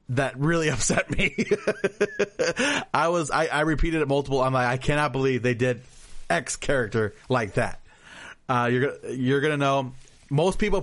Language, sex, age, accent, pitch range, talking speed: English, male, 30-49, American, 125-160 Hz, 165 wpm